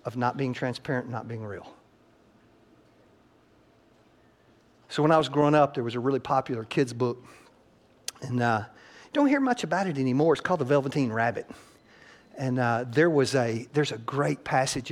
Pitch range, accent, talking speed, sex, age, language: 130-175 Hz, American, 175 wpm, male, 50-69, English